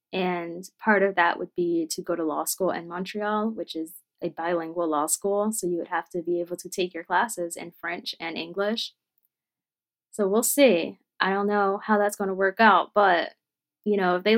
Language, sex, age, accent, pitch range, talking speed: English, female, 20-39, American, 180-210 Hz, 215 wpm